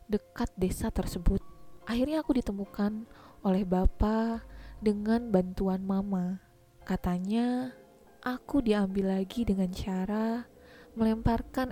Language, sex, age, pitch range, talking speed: Indonesian, female, 20-39, 185-225 Hz, 90 wpm